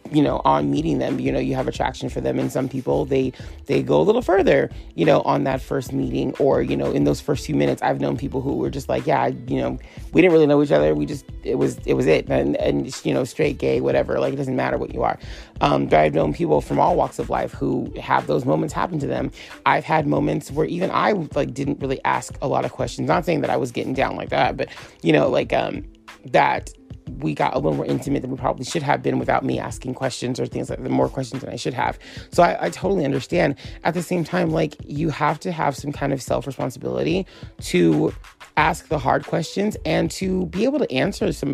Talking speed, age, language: 250 wpm, 30-49, English